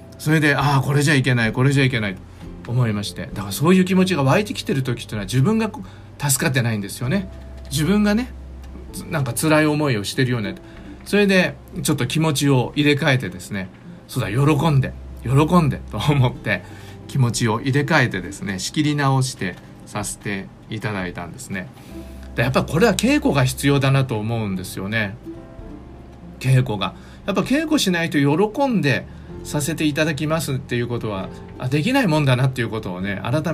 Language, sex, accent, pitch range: Japanese, male, native, 100-150 Hz